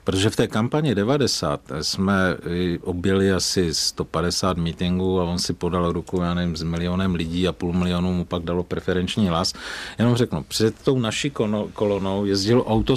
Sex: male